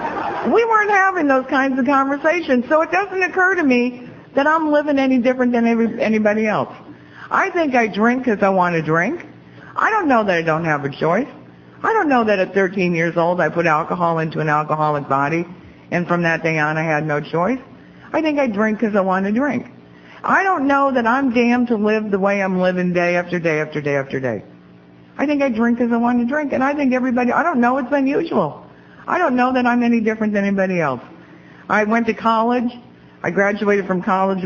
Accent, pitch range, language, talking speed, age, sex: American, 165-245 Hz, English, 225 wpm, 60-79, female